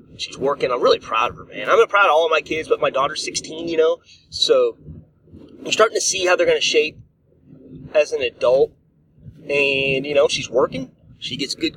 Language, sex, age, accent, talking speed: English, male, 30-49, American, 210 wpm